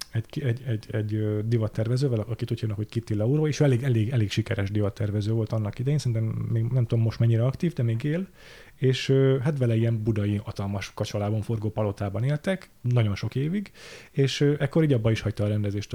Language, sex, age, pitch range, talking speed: Hungarian, male, 30-49, 110-140 Hz, 195 wpm